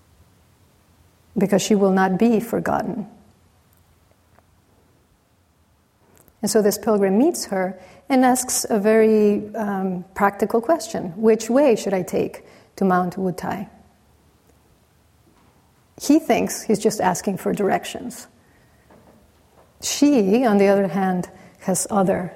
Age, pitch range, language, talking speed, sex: 40-59, 185-220 Hz, English, 110 wpm, female